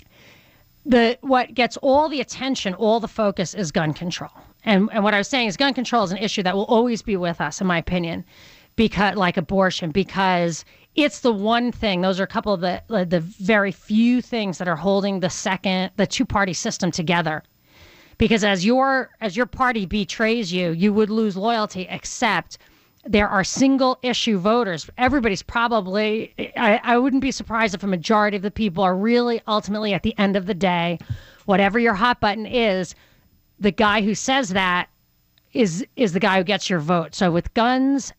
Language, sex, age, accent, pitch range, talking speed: English, female, 40-59, American, 190-230 Hz, 195 wpm